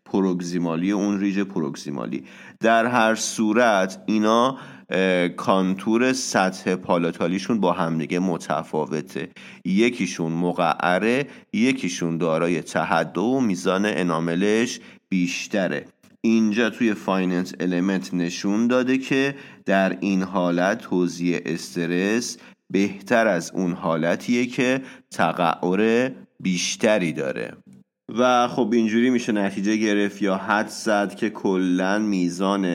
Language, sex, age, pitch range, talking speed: English, male, 30-49, 90-110 Hz, 105 wpm